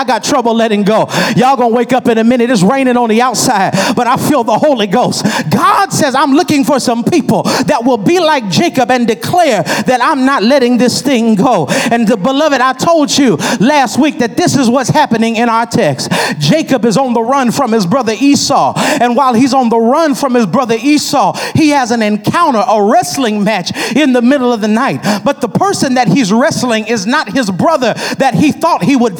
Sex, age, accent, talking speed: male, 40-59, American, 220 wpm